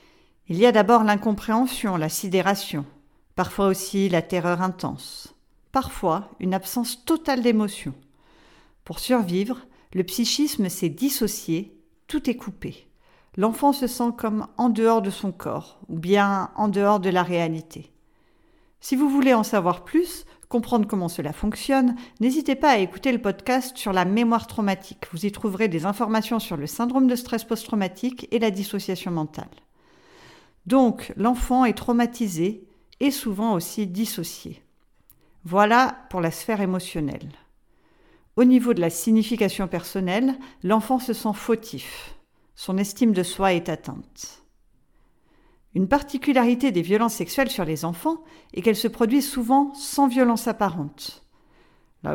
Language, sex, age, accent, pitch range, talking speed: French, female, 50-69, French, 185-250 Hz, 140 wpm